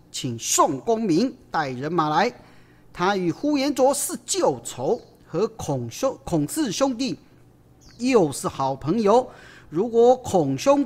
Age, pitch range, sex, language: 40-59, 155-255 Hz, male, Chinese